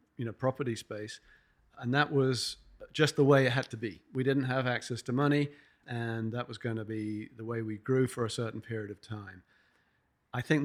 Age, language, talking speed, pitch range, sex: 40-59, English, 210 wpm, 115-135 Hz, male